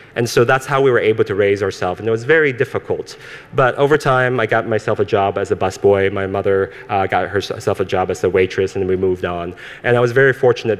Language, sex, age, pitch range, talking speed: English, male, 30-49, 95-130 Hz, 250 wpm